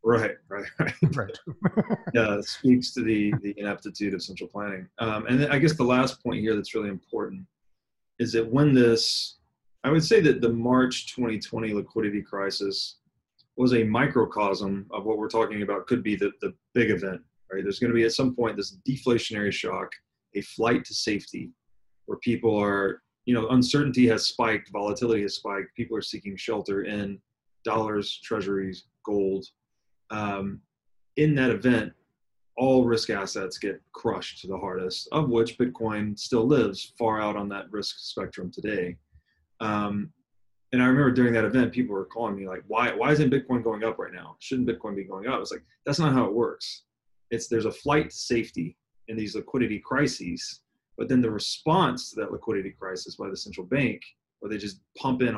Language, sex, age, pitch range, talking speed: English, male, 30-49, 100-125 Hz, 185 wpm